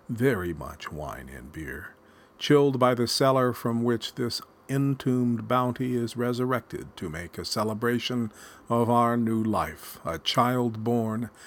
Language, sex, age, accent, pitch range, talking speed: English, male, 50-69, American, 90-125 Hz, 140 wpm